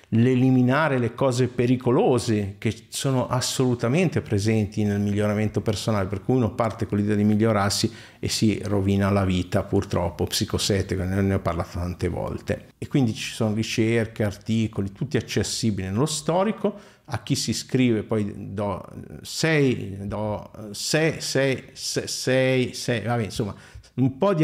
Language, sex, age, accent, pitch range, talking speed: Italian, male, 50-69, native, 105-130 Hz, 140 wpm